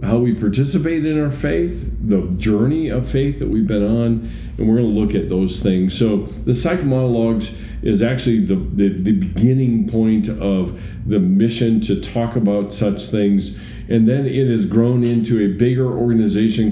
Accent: American